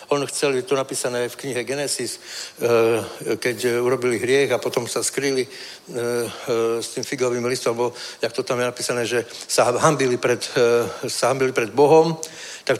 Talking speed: 145 wpm